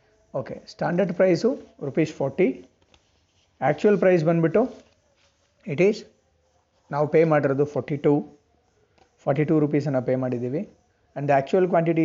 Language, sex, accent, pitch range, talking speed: Kannada, male, native, 135-170 Hz, 120 wpm